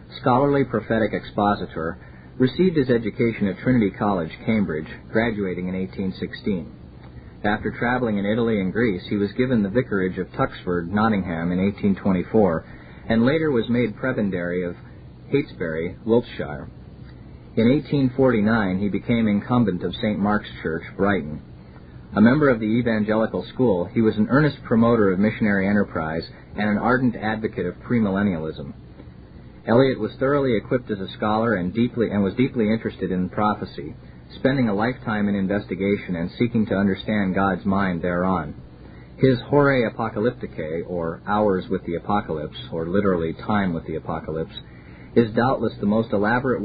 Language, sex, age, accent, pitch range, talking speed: English, male, 40-59, American, 90-115 Hz, 145 wpm